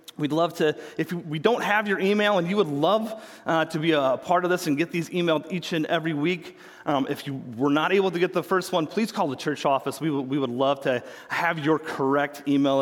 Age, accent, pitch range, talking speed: 30-49, American, 130-180 Hz, 255 wpm